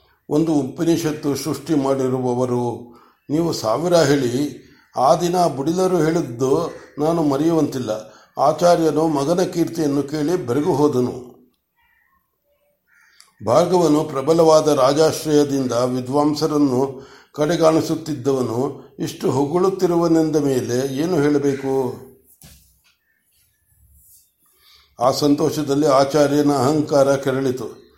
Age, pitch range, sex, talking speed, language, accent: 60-79, 135-160 Hz, male, 75 wpm, Kannada, native